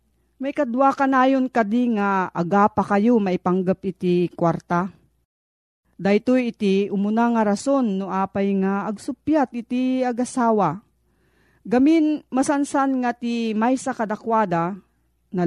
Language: Filipino